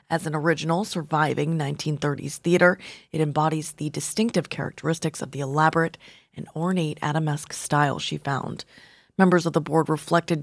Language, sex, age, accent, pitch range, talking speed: English, female, 30-49, American, 150-180 Hz, 145 wpm